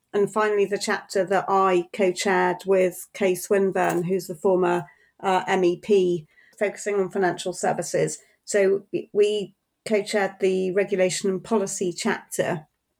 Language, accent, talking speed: English, British, 135 wpm